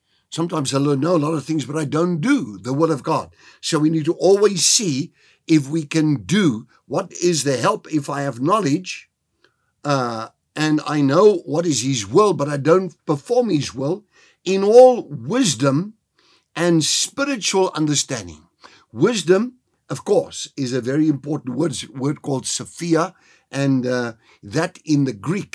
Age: 60-79